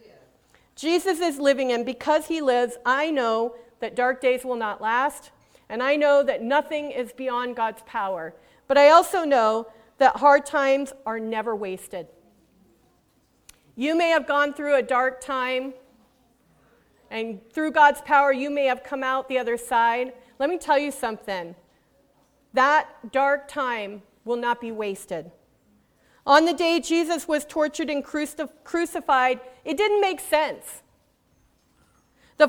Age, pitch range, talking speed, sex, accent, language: 40-59, 245-315 Hz, 145 wpm, female, American, English